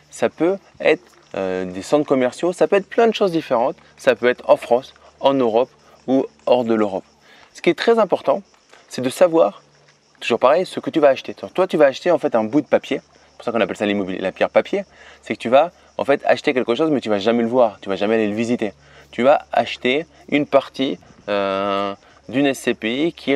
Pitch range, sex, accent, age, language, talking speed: 110-155 Hz, male, French, 20-39, French, 235 wpm